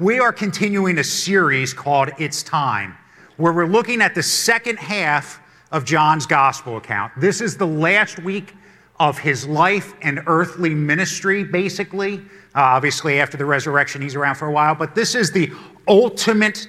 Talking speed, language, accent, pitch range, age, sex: 165 wpm, English, American, 145-195 Hz, 50-69, male